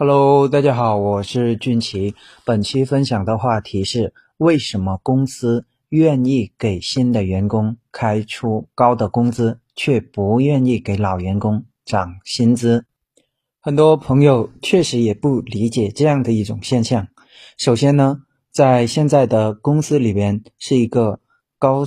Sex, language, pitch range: male, Chinese, 110-140 Hz